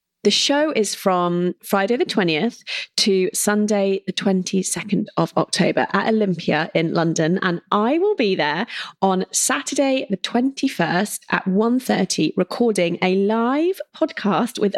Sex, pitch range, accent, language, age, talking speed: female, 180-235 Hz, British, English, 30-49, 135 wpm